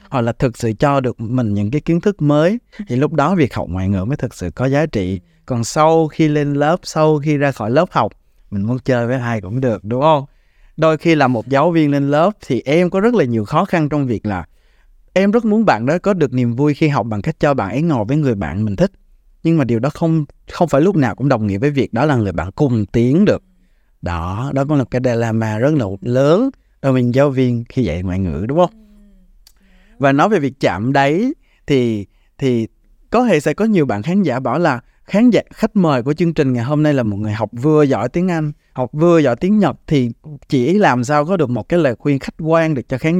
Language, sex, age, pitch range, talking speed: Vietnamese, male, 20-39, 120-160 Hz, 255 wpm